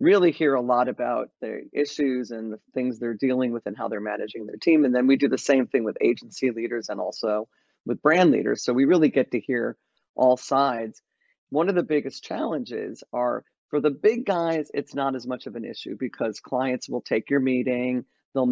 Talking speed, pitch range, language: 215 wpm, 130-160 Hz, English